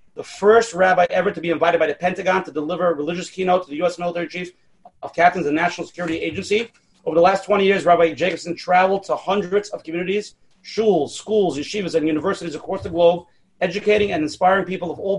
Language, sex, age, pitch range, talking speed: English, male, 30-49, 165-195 Hz, 205 wpm